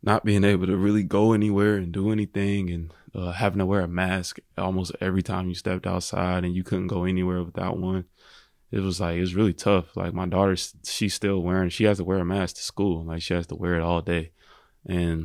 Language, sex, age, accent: Swedish, male, 20-39, American